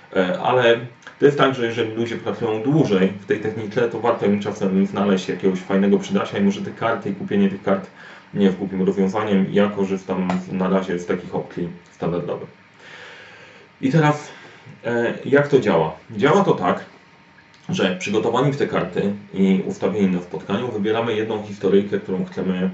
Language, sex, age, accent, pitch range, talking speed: Polish, male, 30-49, native, 95-120 Hz, 165 wpm